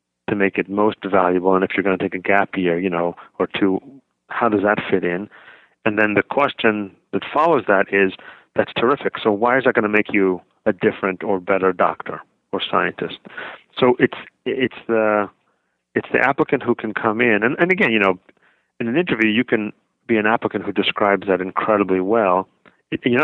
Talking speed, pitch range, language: 205 wpm, 95-115 Hz, English